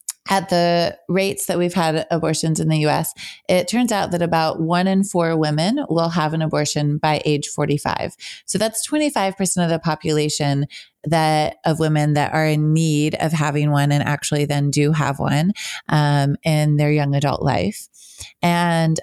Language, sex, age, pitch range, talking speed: English, female, 20-39, 150-175 Hz, 175 wpm